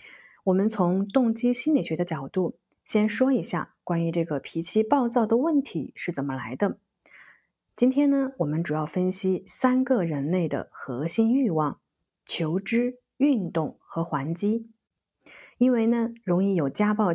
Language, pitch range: Chinese, 165-240 Hz